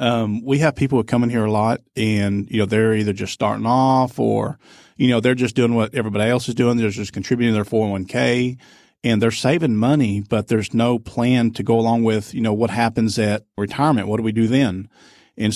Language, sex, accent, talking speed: English, male, American, 225 wpm